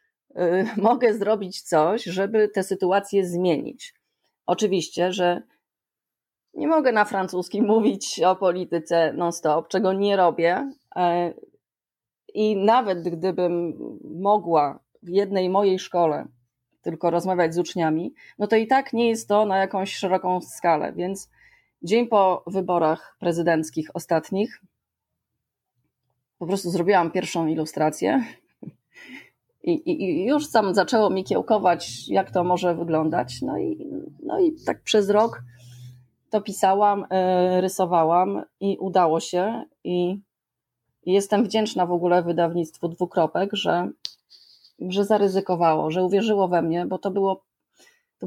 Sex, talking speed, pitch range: female, 120 wpm, 170-205 Hz